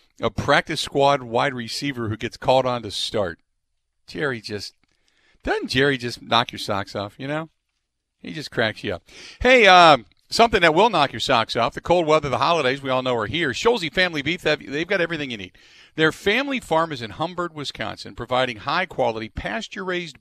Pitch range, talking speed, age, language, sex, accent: 125-160 Hz, 190 wpm, 50-69, English, male, American